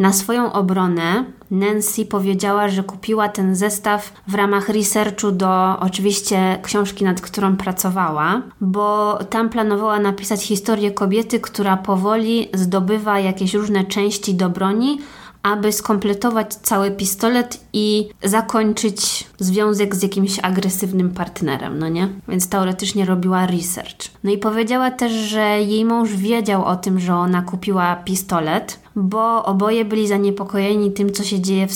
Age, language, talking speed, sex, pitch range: 20-39, Polish, 135 wpm, female, 185-215 Hz